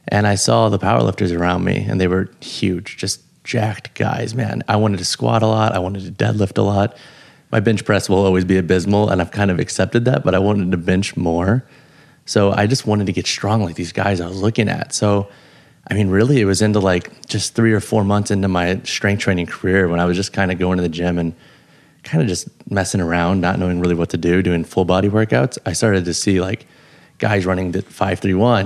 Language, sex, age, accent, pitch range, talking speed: English, male, 30-49, American, 95-110 Hz, 235 wpm